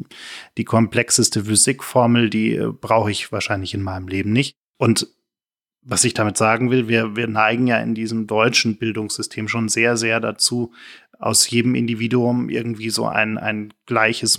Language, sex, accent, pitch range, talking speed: German, male, German, 110-120 Hz, 155 wpm